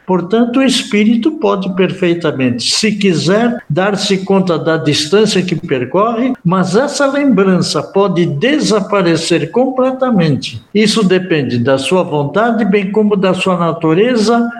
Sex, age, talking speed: male, 60-79, 120 wpm